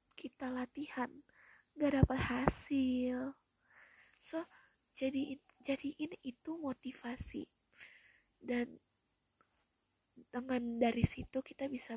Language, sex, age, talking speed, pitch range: Indonesian, female, 20-39, 85 wpm, 250-285 Hz